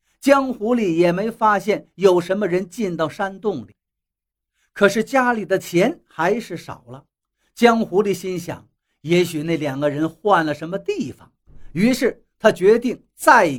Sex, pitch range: male, 175-250 Hz